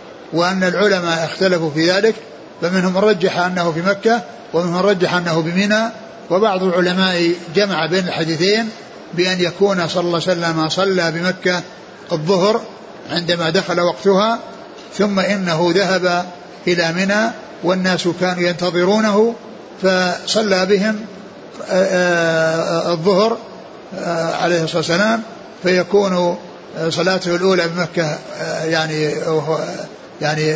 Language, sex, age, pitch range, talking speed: Arabic, male, 60-79, 165-195 Hz, 100 wpm